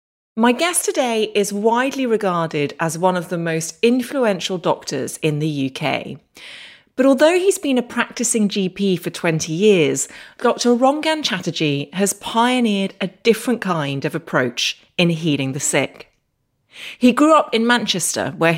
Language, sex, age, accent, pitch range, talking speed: English, female, 30-49, British, 170-245 Hz, 150 wpm